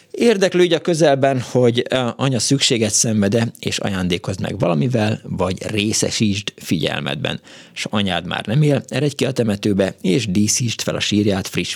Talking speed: 155 wpm